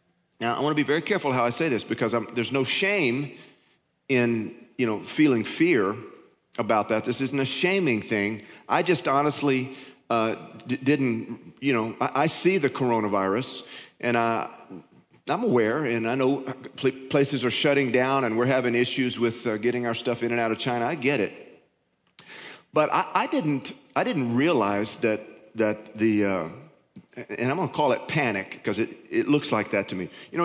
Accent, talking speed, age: American, 190 wpm, 40-59